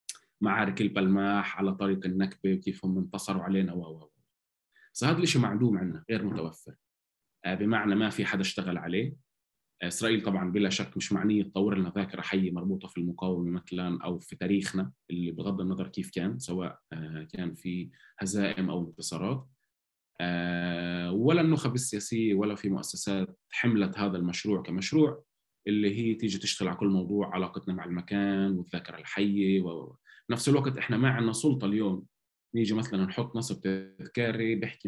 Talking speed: 150 wpm